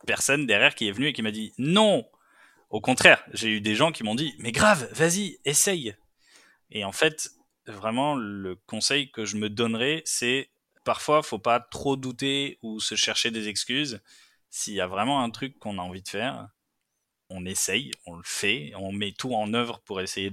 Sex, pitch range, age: male, 105-130 Hz, 20-39